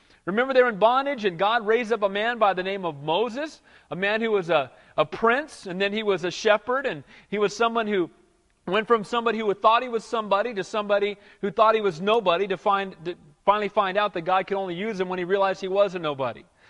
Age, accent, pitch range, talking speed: 40-59, American, 190-230 Hz, 245 wpm